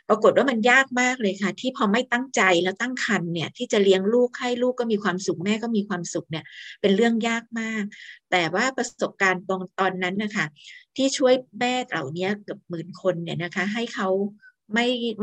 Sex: female